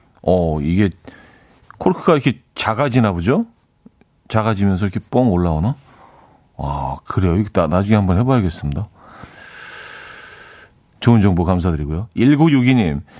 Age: 40-59